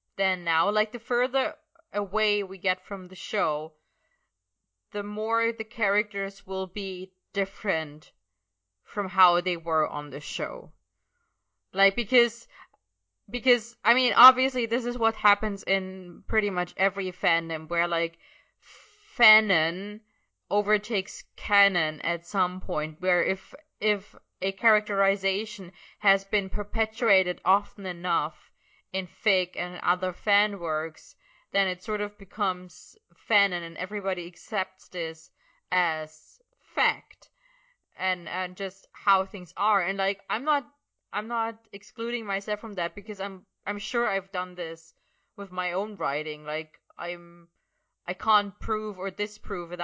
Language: English